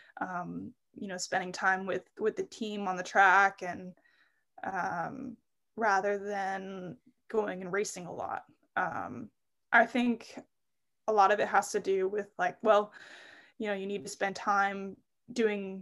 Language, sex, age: English, female, 20-39